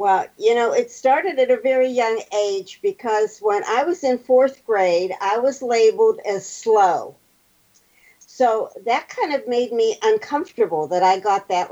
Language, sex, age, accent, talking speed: English, female, 50-69, American, 170 wpm